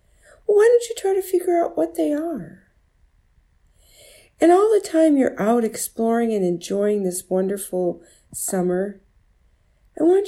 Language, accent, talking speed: English, American, 140 wpm